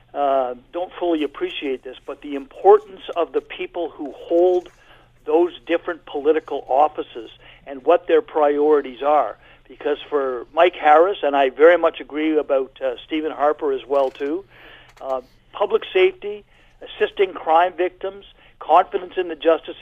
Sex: male